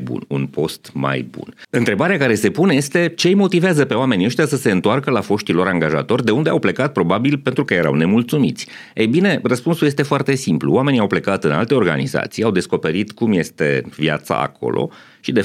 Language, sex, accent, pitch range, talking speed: Romanian, male, native, 75-120 Hz, 195 wpm